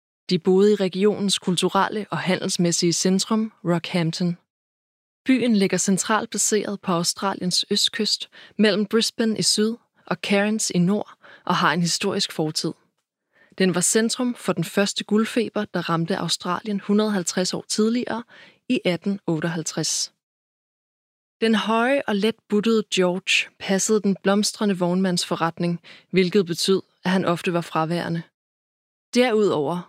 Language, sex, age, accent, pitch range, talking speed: Danish, female, 20-39, native, 175-210 Hz, 125 wpm